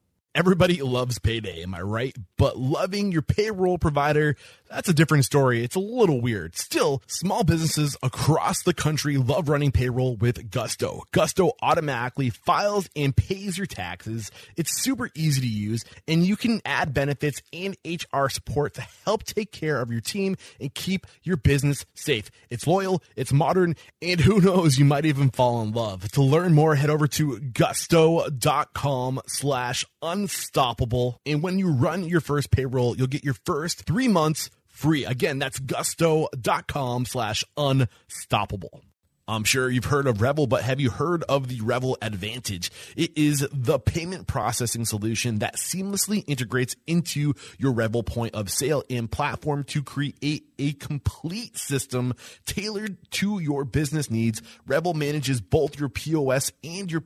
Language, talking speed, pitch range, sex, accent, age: English, 160 wpm, 120-160 Hz, male, American, 20-39